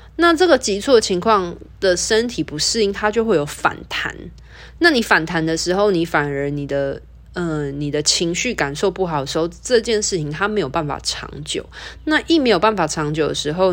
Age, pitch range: 20-39, 150-205 Hz